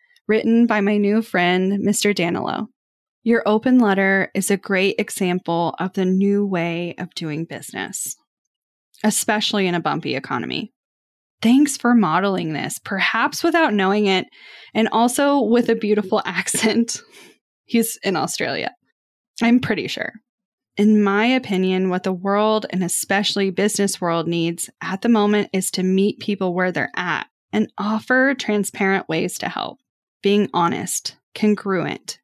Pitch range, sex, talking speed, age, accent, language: 190-235 Hz, female, 140 wpm, 10-29, American, English